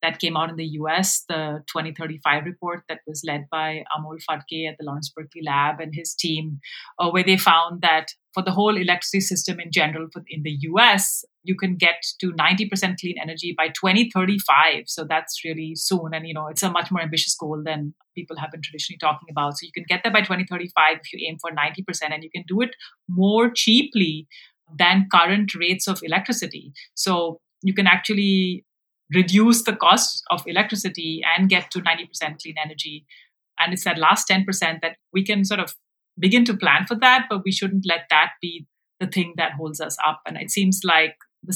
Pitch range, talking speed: 155-190 Hz, 200 wpm